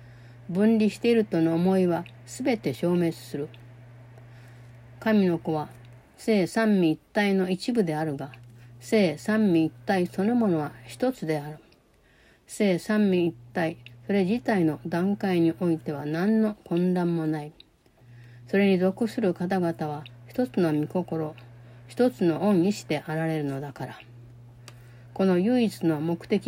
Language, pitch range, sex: Japanese, 140-200 Hz, female